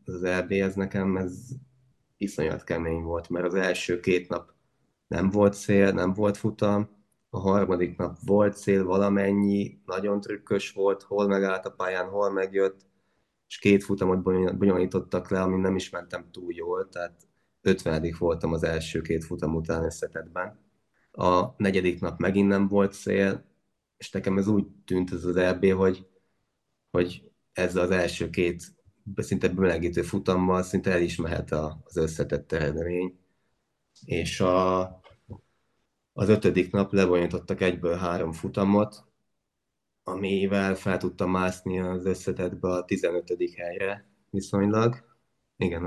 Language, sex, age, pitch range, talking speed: Hungarian, male, 20-39, 90-100 Hz, 135 wpm